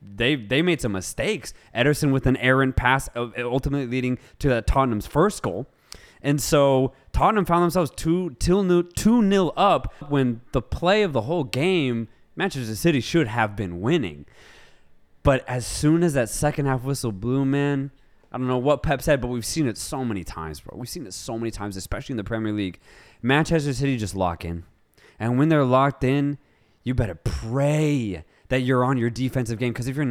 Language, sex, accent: English, male, American